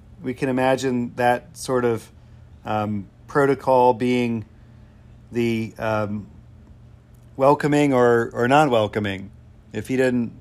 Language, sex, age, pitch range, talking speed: English, male, 40-59, 110-135 Hz, 105 wpm